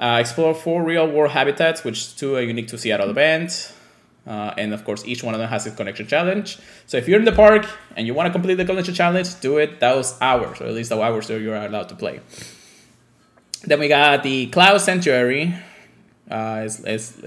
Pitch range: 110-160 Hz